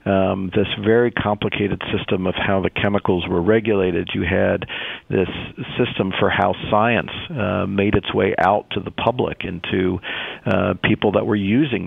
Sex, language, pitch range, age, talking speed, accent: male, English, 100-115 Hz, 50-69, 160 wpm, American